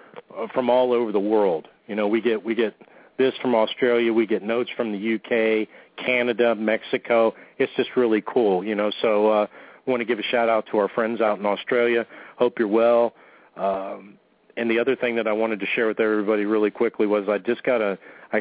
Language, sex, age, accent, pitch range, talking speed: English, male, 40-59, American, 105-120 Hz, 215 wpm